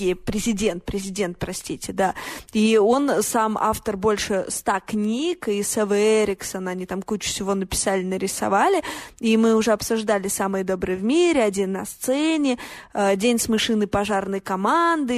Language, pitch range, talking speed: Russian, 200-245 Hz, 140 wpm